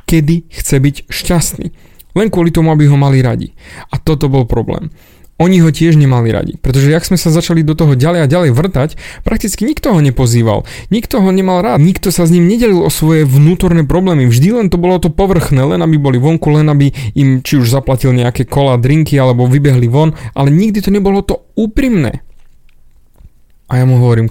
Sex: male